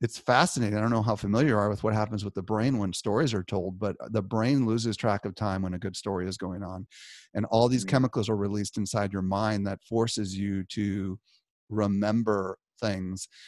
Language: English